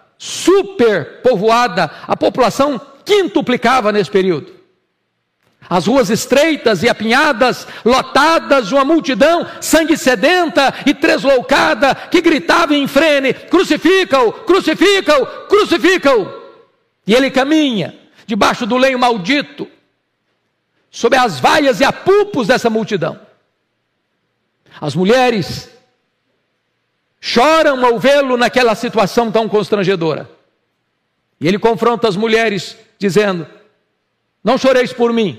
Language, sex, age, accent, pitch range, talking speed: Portuguese, male, 60-79, Brazilian, 210-290 Hz, 100 wpm